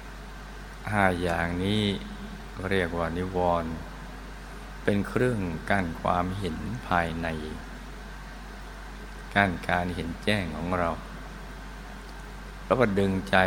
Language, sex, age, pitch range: Thai, male, 60-79, 85-95 Hz